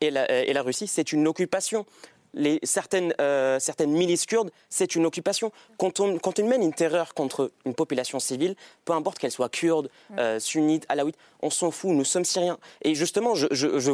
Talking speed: 200 wpm